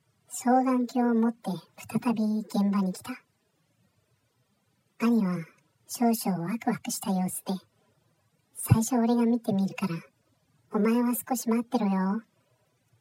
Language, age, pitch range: Japanese, 50-69, 130-210 Hz